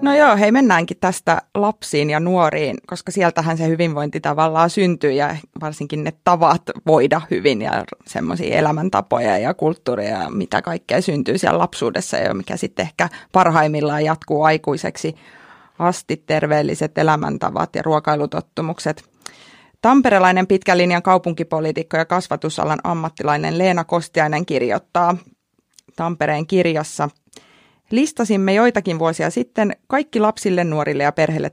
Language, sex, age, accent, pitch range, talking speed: Finnish, female, 30-49, native, 155-195 Hz, 120 wpm